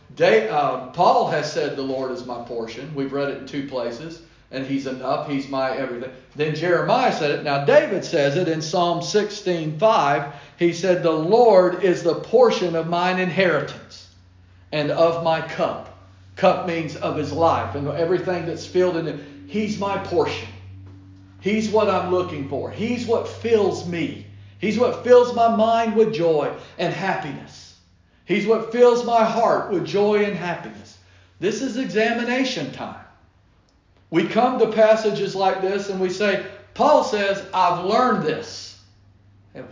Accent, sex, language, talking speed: American, male, English, 160 wpm